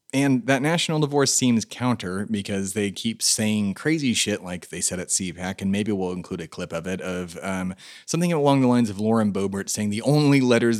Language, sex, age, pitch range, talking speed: English, male, 30-49, 95-125 Hz, 210 wpm